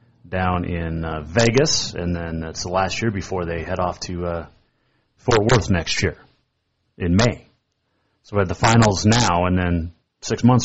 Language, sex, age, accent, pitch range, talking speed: English, male, 30-49, American, 90-125 Hz, 180 wpm